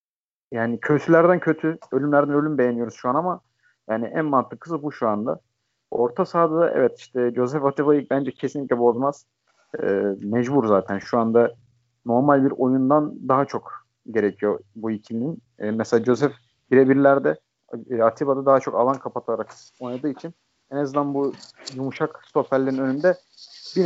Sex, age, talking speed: male, 50-69, 140 wpm